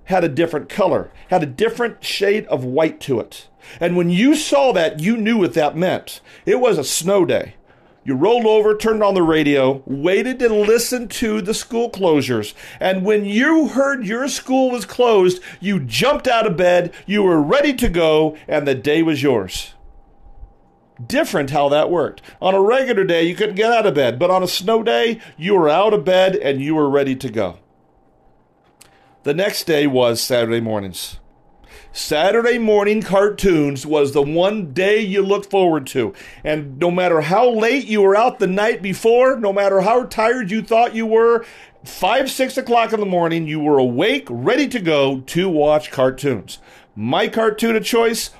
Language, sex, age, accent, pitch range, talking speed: English, male, 40-59, American, 150-225 Hz, 185 wpm